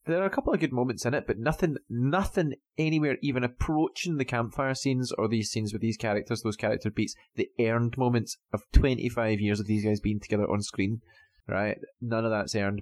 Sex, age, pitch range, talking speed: male, 20-39, 100-125 Hz, 210 wpm